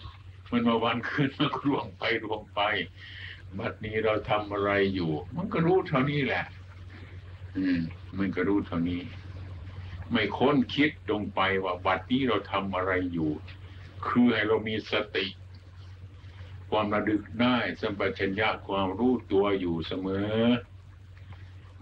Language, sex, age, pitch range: Thai, male, 60-79, 95-105 Hz